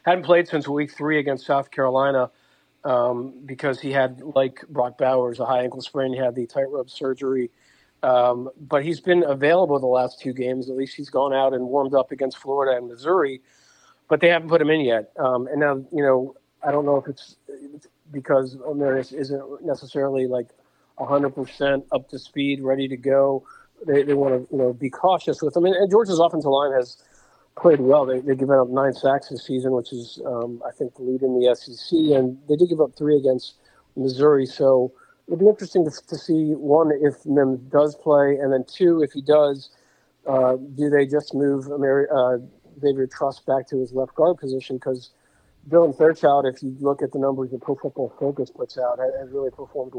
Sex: male